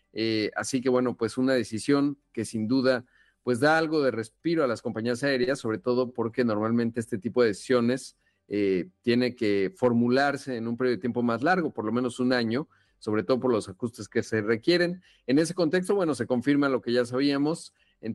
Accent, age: Mexican, 40-59